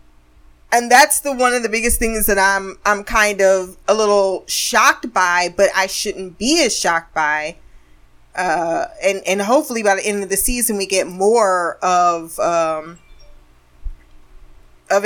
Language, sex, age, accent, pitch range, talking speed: English, female, 20-39, American, 170-210 Hz, 160 wpm